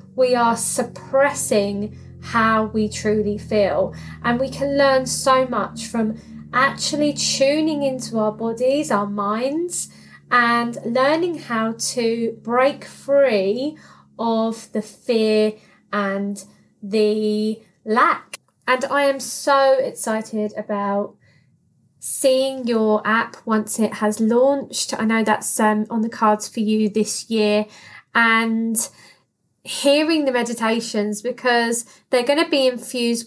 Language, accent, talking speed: English, British, 120 wpm